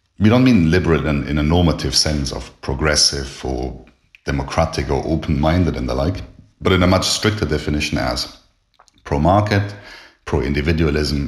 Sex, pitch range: male, 75-90 Hz